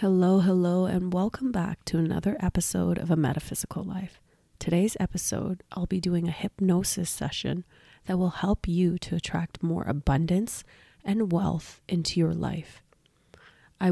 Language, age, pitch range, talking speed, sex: English, 30-49, 170-195 Hz, 145 wpm, female